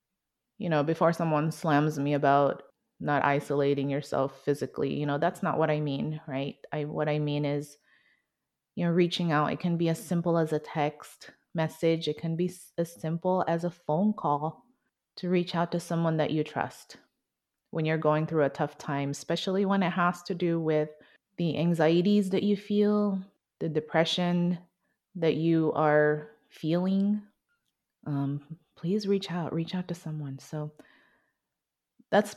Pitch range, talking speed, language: 150-175 Hz, 165 wpm, English